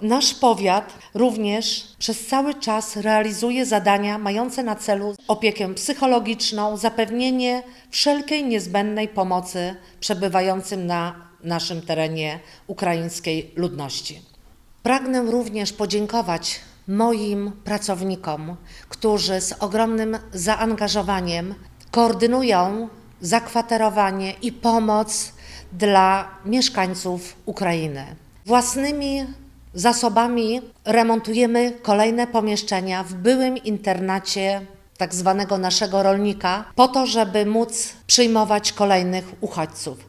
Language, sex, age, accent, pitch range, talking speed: Polish, female, 50-69, native, 190-230 Hz, 85 wpm